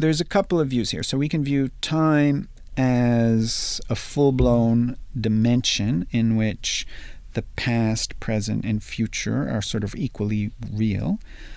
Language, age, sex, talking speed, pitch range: English, 40-59, male, 140 wpm, 105-130 Hz